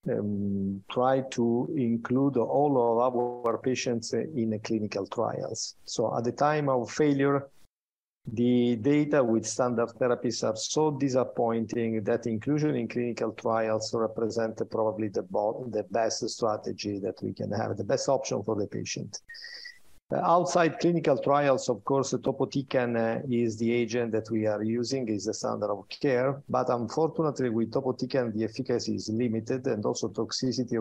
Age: 50-69